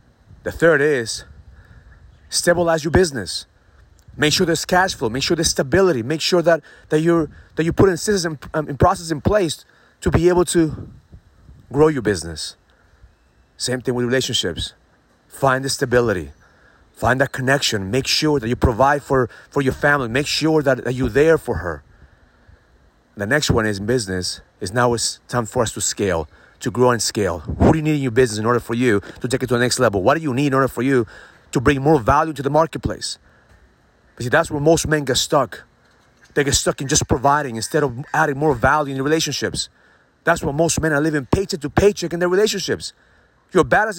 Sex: male